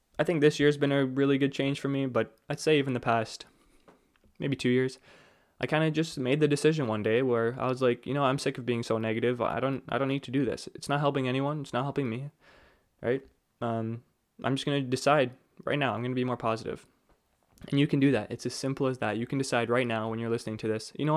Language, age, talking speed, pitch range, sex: English, 20-39, 270 wpm, 120-140 Hz, male